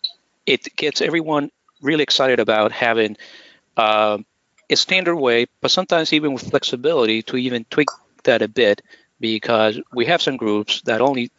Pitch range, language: 105-135 Hz, English